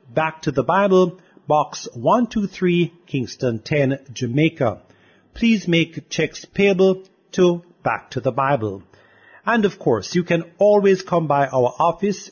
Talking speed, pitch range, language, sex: 135 wpm, 140-195 Hz, English, male